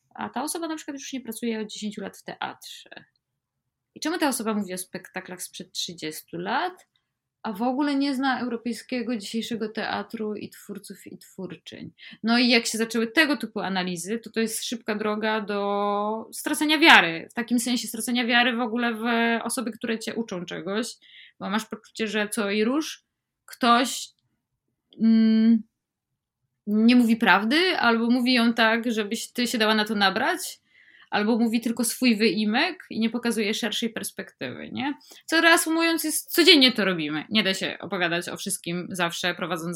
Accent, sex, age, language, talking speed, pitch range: native, female, 20-39, Polish, 170 wpm, 200-245 Hz